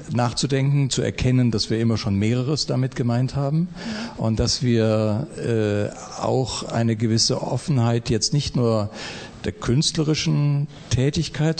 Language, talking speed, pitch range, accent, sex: German, 130 wpm, 110-130 Hz, German, male